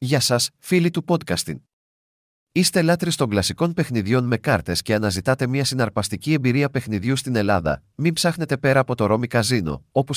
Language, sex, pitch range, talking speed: Greek, male, 105-140 Hz, 160 wpm